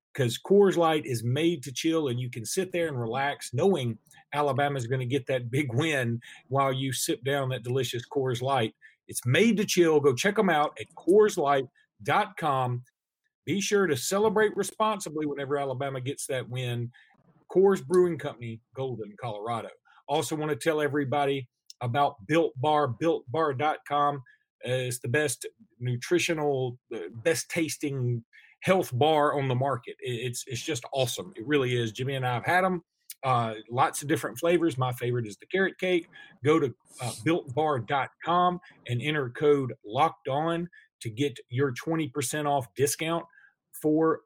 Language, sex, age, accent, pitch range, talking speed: English, male, 40-59, American, 125-165 Hz, 160 wpm